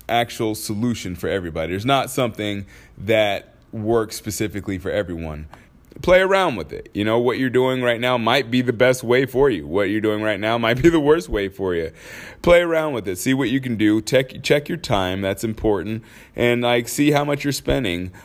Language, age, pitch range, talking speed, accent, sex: English, 30-49, 95-130 Hz, 210 wpm, American, male